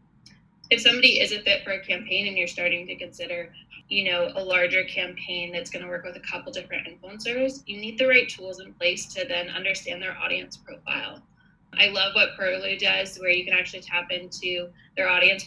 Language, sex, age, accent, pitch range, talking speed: English, female, 20-39, American, 180-225 Hz, 205 wpm